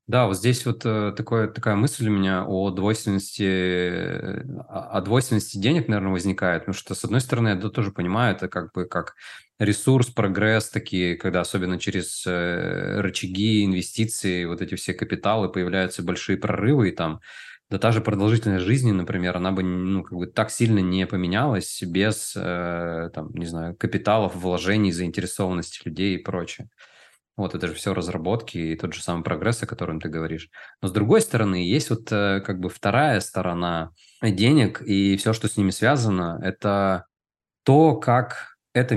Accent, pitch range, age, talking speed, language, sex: native, 90-110 Hz, 20-39, 165 wpm, Russian, male